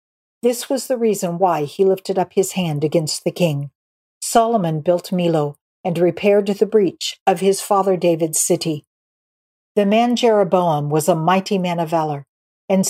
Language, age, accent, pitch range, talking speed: English, 50-69, American, 160-210 Hz, 165 wpm